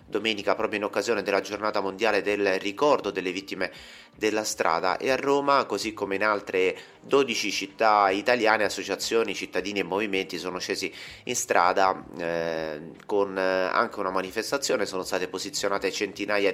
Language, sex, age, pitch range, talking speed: Italian, male, 30-49, 95-110 Hz, 145 wpm